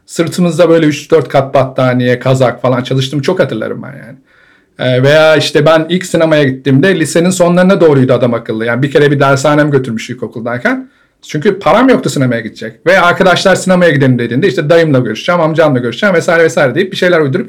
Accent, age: native, 50-69